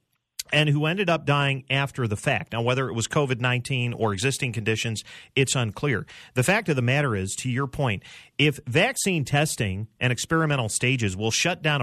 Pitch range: 125-175 Hz